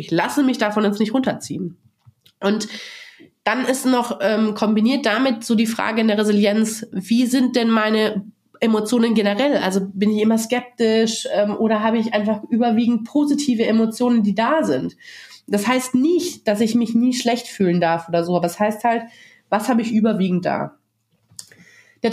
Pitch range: 195-240 Hz